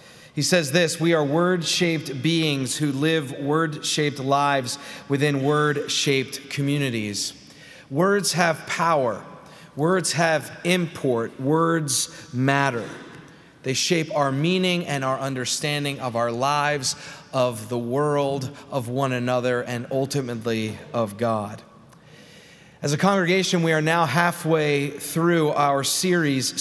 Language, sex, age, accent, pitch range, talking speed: English, male, 30-49, American, 140-175 Hz, 115 wpm